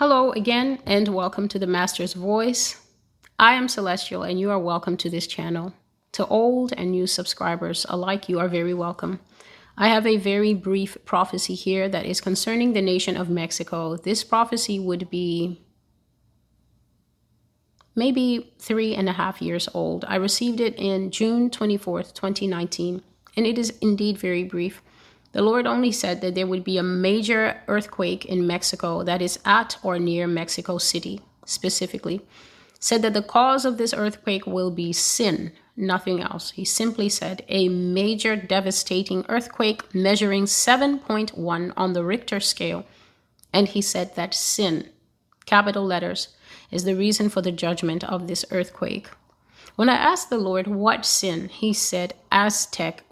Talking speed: 155 wpm